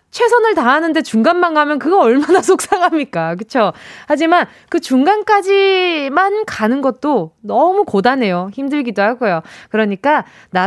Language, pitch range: Korean, 225-355 Hz